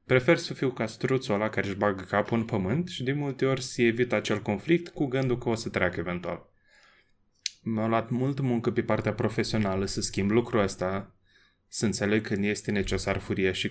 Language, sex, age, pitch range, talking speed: Romanian, male, 20-39, 100-130 Hz, 195 wpm